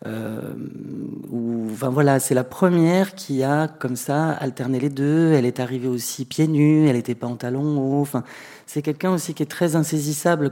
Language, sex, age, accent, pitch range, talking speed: French, male, 30-49, French, 120-145 Hz, 185 wpm